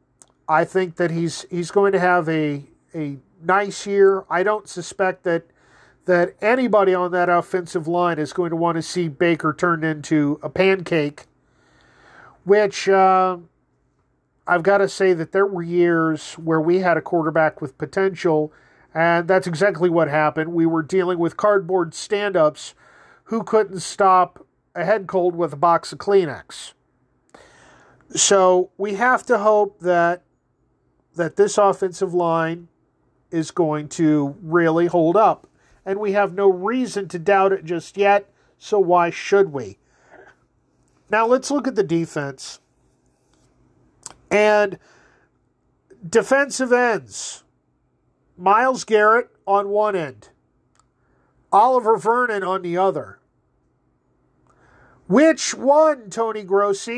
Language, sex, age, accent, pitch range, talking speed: English, male, 40-59, American, 165-200 Hz, 130 wpm